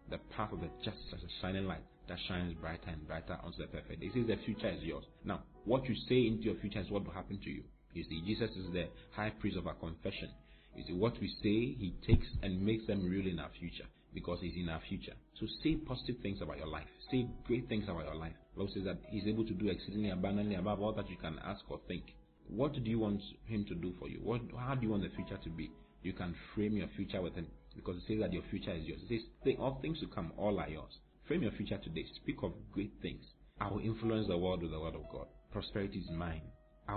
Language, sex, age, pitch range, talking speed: English, male, 40-59, 85-110 Hz, 255 wpm